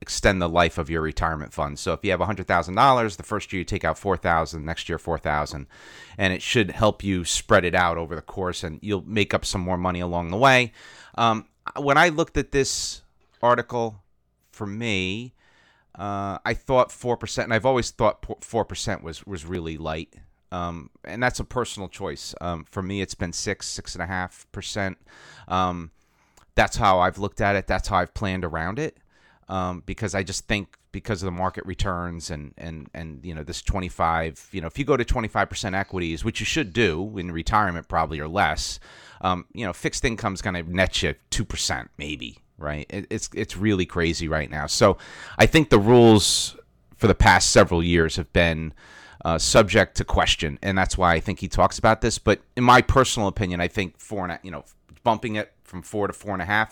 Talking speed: 215 wpm